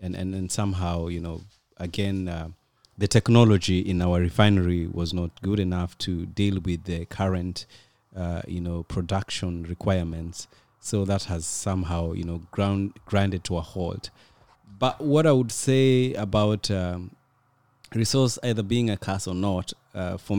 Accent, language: South African, Hebrew